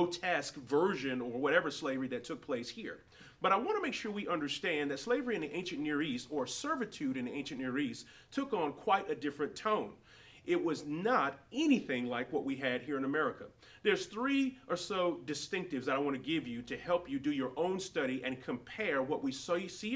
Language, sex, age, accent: English, male, 30-49, American